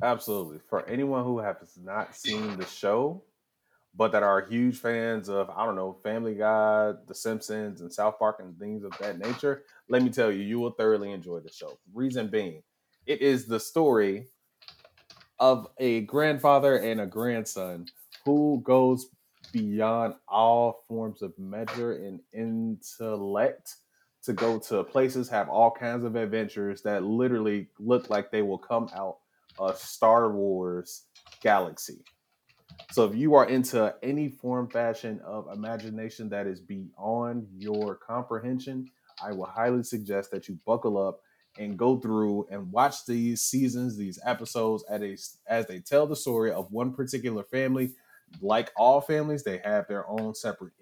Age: 20-39